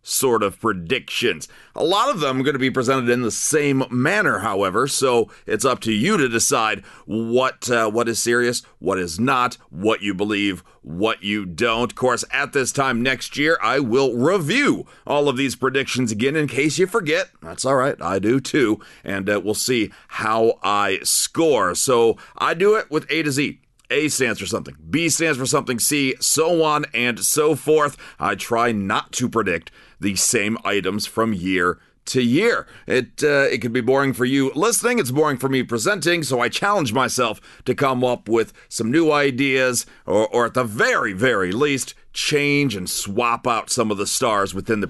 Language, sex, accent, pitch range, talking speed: English, male, American, 110-145 Hz, 195 wpm